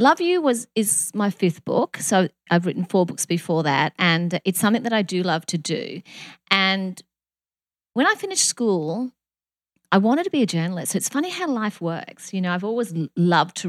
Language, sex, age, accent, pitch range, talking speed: English, female, 40-59, Australian, 170-205 Hz, 200 wpm